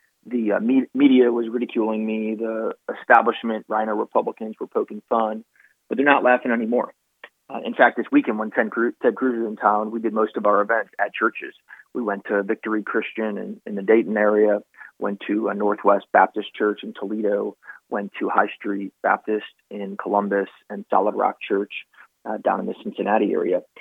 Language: English